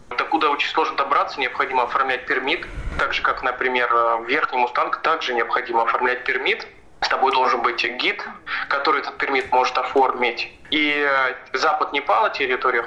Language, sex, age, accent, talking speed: Russian, male, 20-39, native, 145 wpm